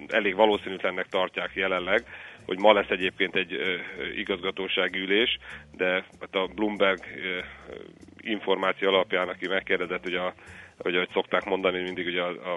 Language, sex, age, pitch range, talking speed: Hungarian, male, 40-59, 90-100 Hz, 125 wpm